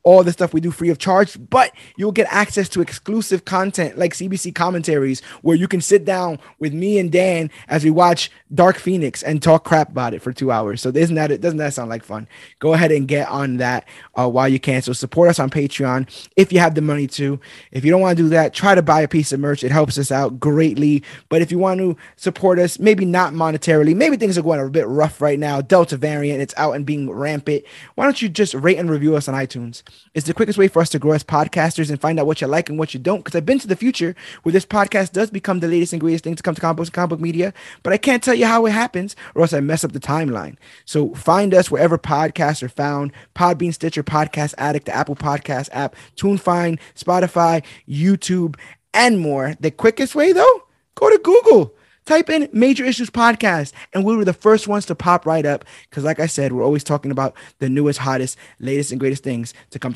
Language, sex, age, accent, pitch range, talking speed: English, male, 20-39, American, 140-185 Hz, 245 wpm